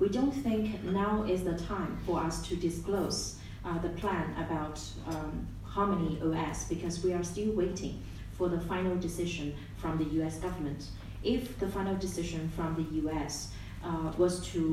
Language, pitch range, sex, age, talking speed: Romanian, 155-190 Hz, female, 30-49, 165 wpm